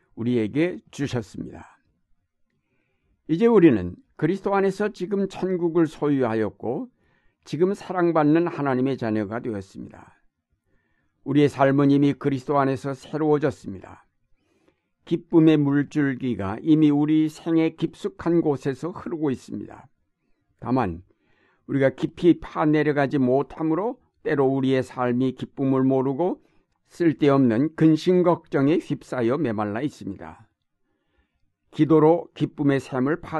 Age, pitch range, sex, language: 60-79, 125-160 Hz, male, Korean